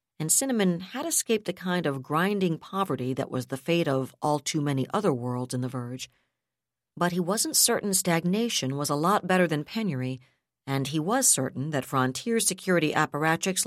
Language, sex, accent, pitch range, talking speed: English, female, American, 130-180 Hz, 180 wpm